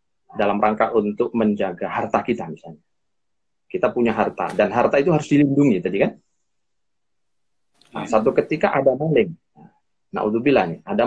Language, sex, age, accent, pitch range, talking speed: Indonesian, male, 30-49, native, 115-155 Hz, 135 wpm